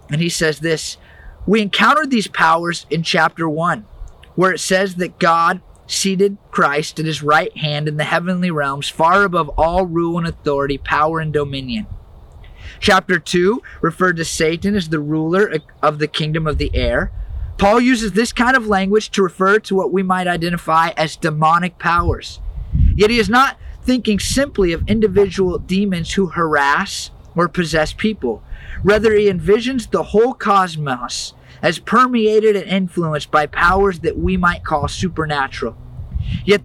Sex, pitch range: male, 155-205 Hz